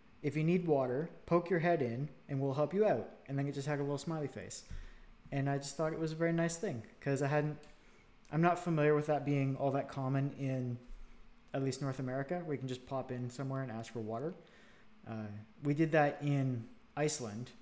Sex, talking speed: male, 225 wpm